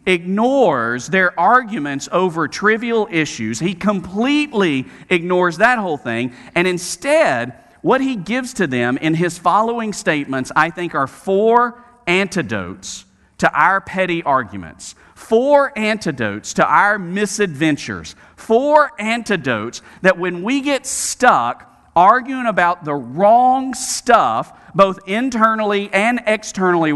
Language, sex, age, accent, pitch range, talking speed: English, male, 40-59, American, 150-220 Hz, 120 wpm